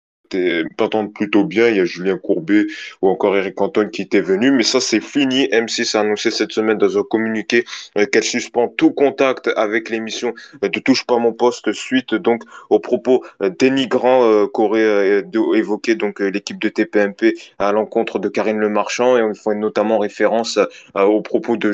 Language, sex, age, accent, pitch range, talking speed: French, male, 20-39, French, 105-120 Hz, 180 wpm